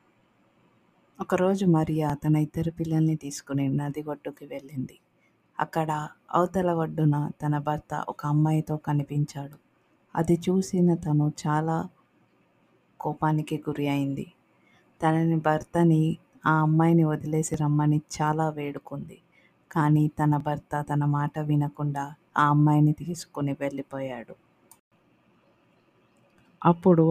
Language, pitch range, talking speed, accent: Telugu, 145-160 Hz, 95 wpm, native